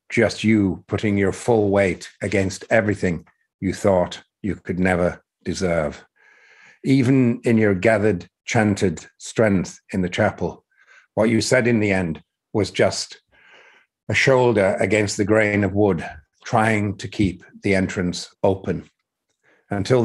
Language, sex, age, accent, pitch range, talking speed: English, male, 50-69, British, 95-110 Hz, 135 wpm